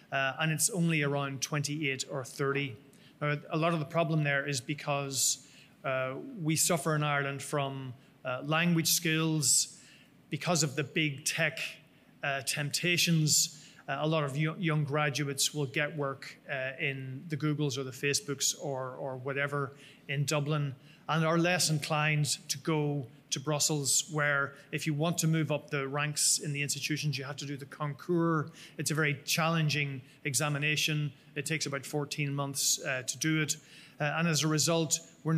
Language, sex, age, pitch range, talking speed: English, male, 30-49, 140-155 Hz, 170 wpm